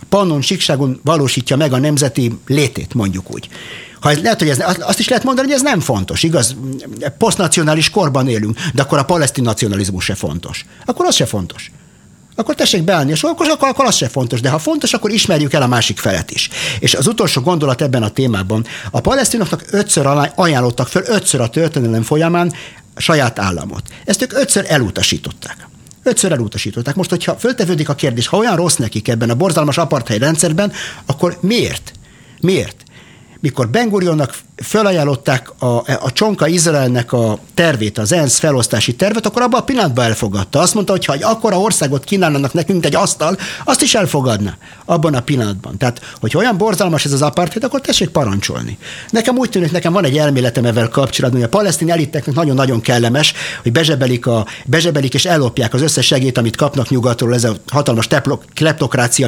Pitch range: 125-180 Hz